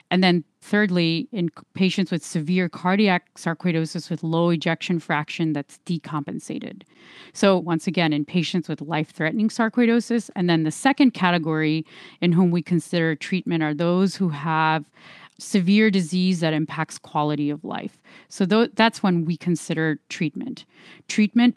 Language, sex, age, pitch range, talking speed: English, female, 30-49, 160-195 Hz, 140 wpm